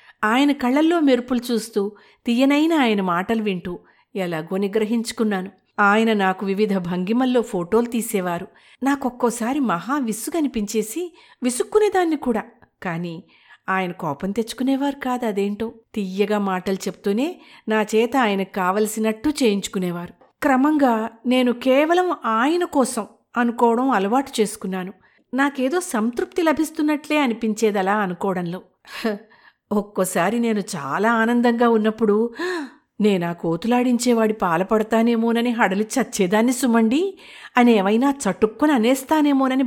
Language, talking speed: Telugu, 95 wpm